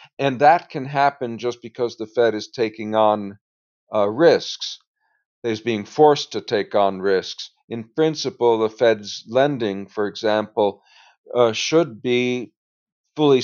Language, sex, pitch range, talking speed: English, male, 105-135 Hz, 140 wpm